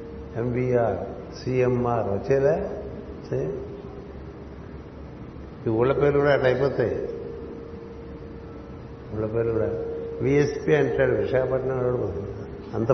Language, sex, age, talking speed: Telugu, male, 60-79, 65 wpm